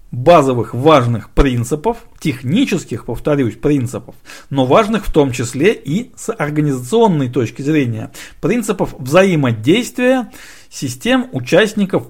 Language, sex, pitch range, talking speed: Russian, male, 135-205 Hz, 100 wpm